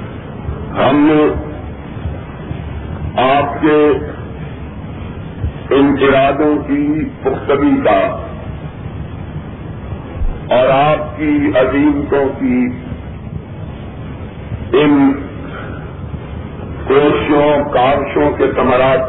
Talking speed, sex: 55 wpm, male